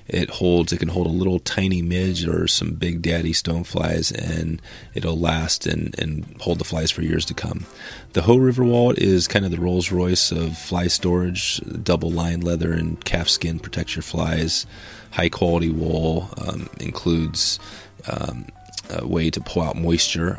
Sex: male